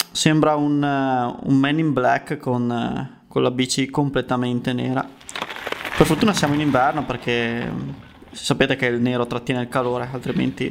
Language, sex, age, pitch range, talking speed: Italian, male, 20-39, 135-170 Hz, 145 wpm